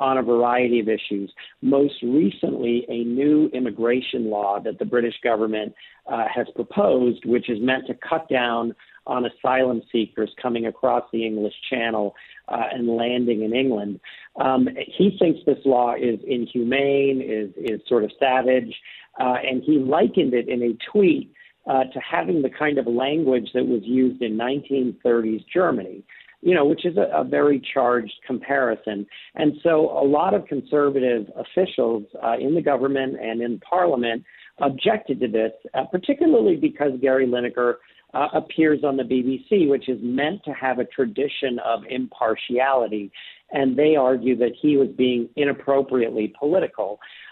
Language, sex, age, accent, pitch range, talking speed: English, male, 50-69, American, 120-140 Hz, 155 wpm